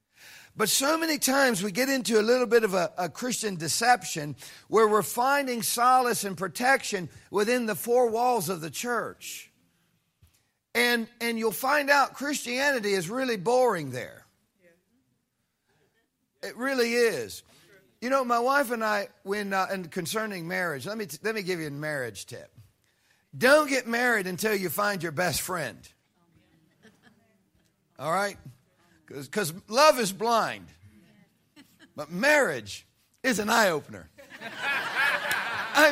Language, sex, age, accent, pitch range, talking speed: English, male, 50-69, American, 165-250 Hz, 140 wpm